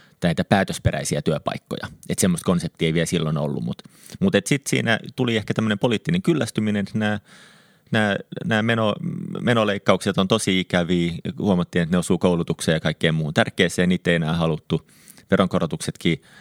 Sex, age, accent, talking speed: male, 30-49, native, 155 wpm